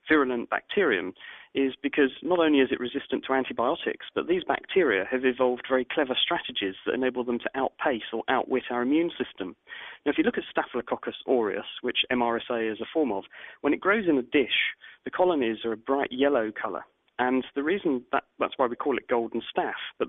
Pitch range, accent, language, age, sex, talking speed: 125-150 Hz, British, English, 40-59, male, 200 wpm